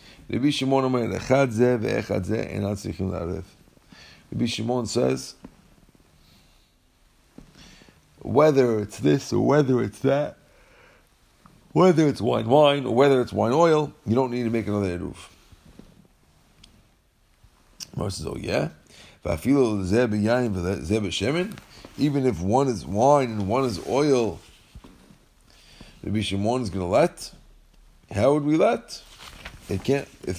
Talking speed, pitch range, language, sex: 100 wpm, 100-140 Hz, English, male